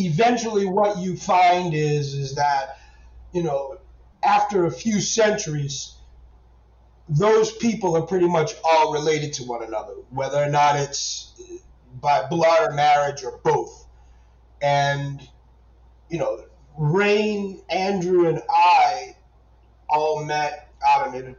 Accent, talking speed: American, 120 wpm